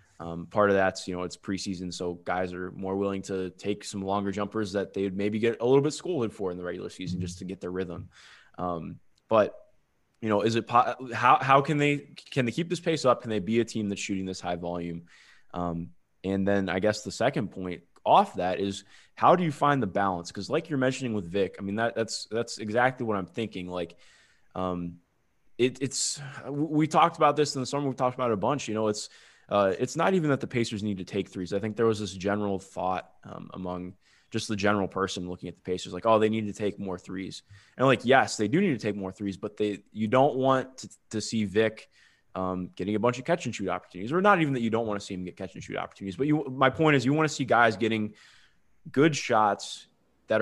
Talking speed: 240 wpm